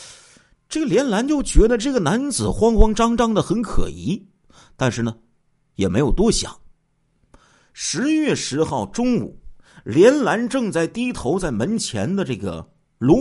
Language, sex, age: Chinese, male, 50-69